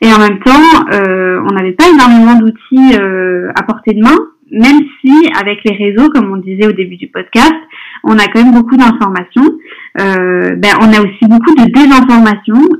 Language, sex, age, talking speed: French, female, 20-39, 190 wpm